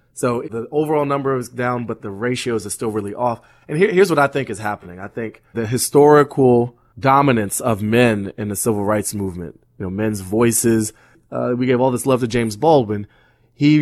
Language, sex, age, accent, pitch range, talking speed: English, male, 20-39, American, 105-130 Hz, 205 wpm